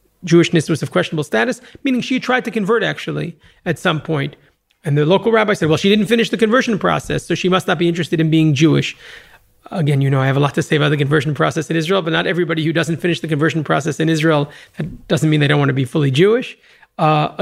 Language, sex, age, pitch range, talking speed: English, male, 30-49, 150-185 Hz, 250 wpm